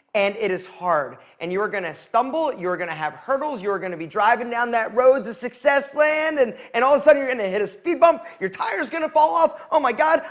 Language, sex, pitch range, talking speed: English, male, 190-285 Hz, 245 wpm